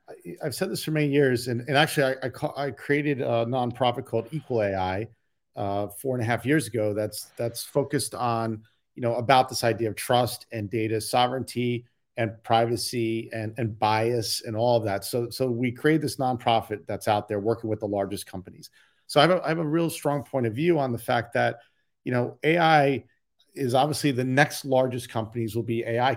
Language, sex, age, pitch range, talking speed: English, male, 40-59, 115-135 Hz, 205 wpm